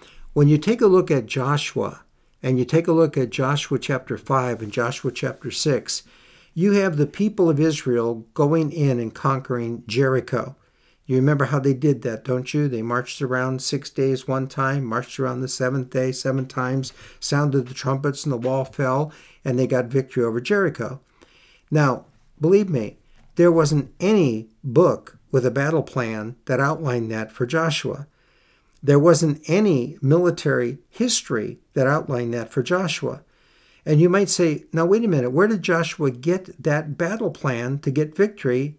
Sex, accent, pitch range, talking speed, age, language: male, American, 125-155 Hz, 170 wpm, 60-79, English